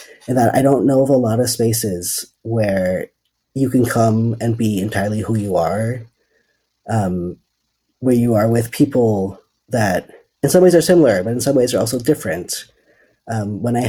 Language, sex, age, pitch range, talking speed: English, male, 40-59, 105-130 Hz, 180 wpm